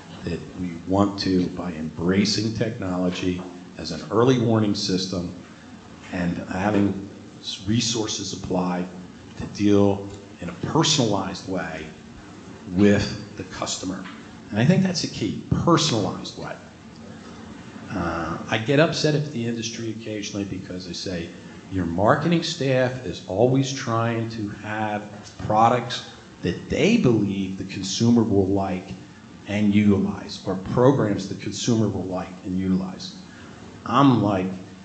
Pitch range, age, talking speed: 90-110 Hz, 50-69, 125 wpm